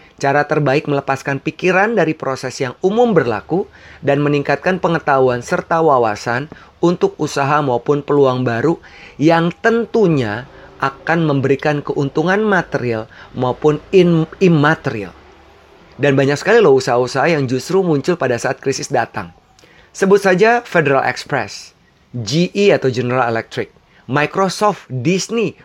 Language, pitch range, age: Indonesian, 130-160 Hz, 30-49